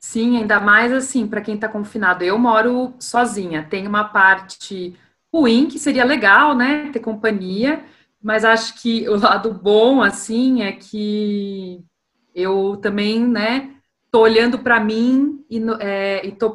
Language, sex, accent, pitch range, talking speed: Portuguese, female, Brazilian, 205-270 Hz, 145 wpm